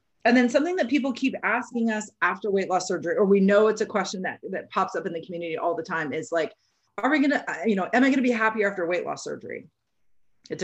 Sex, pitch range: female, 180-225 Hz